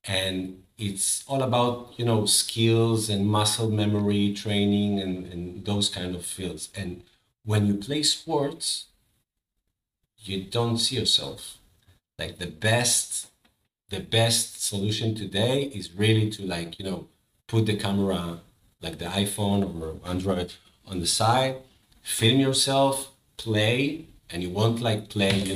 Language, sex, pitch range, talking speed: English, male, 95-115 Hz, 140 wpm